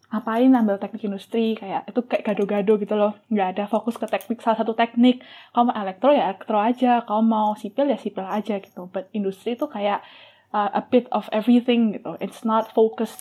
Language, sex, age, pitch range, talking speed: Indonesian, female, 10-29, 200-240 Hz, 200 wpm